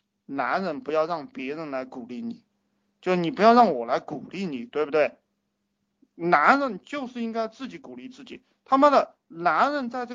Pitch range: 155-240 Hz